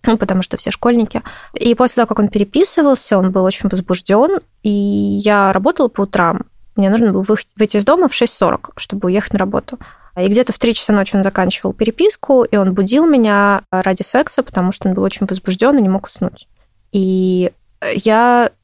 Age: 20-39